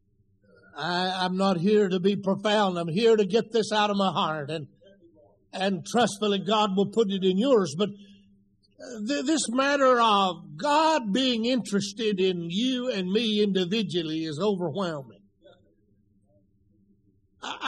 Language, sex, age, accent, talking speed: English, male, 60-79, American, 130 wpm